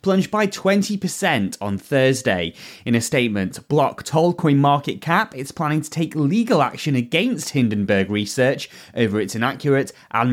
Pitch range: 120-165 Hz